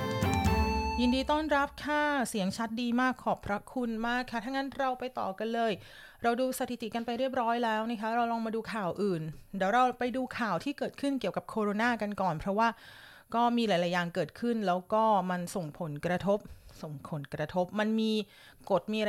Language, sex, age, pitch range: Thai, female, 30-49, 185-235 Hz